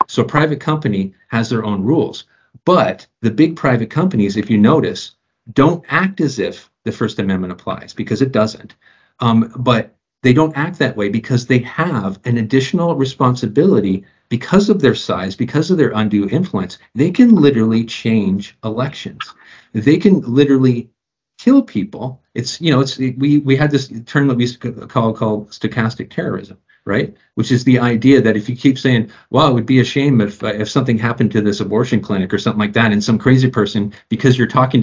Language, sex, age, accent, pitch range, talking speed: English, male, 50-69, American, 110-145 Hz, 185 wpm